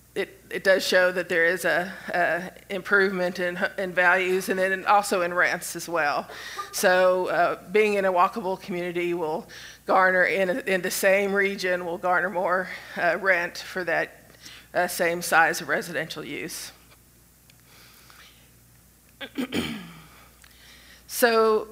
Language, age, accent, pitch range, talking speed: English, 50-69, American, 180-205 Hz, 135 wpm